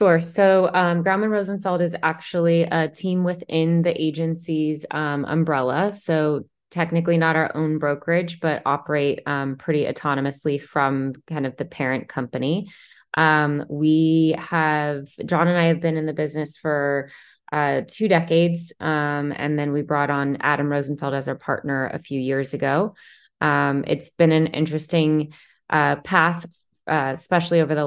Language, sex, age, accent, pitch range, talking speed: English, female, 20-39, American, 135-160 Hz, 155 wpm